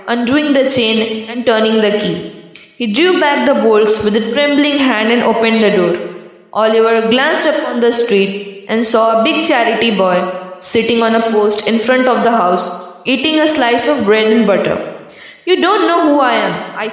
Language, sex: Hindi, female